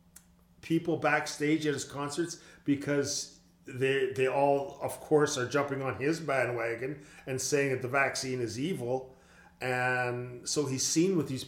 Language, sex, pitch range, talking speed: English, male, 130-160 Hz, 150 wpm